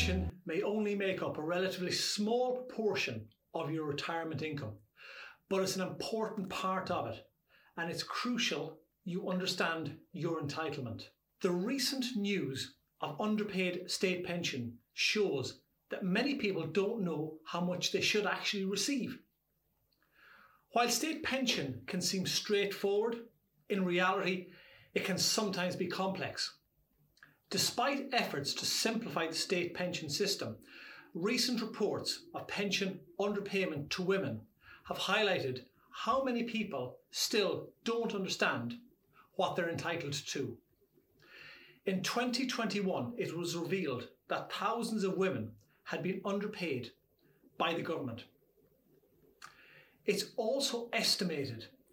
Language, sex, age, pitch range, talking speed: English, male, 40-59, 170-215 Hz, 120 wpm